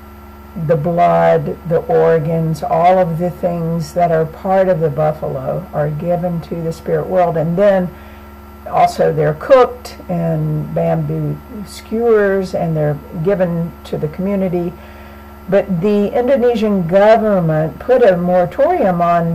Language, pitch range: English, 150-190 Hz